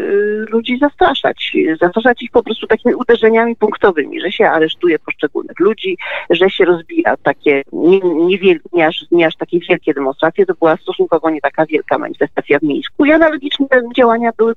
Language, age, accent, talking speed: Polish, 40-59, native, 155 wpm